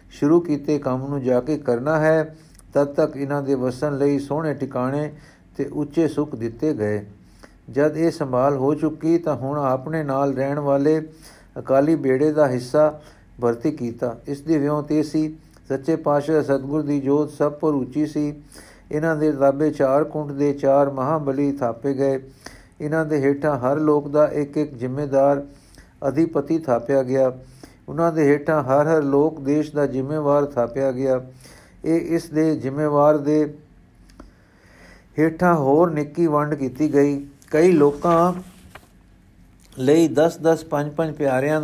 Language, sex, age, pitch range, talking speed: Punjabi, male, 60-79, 135-155 Hz, 145 wpm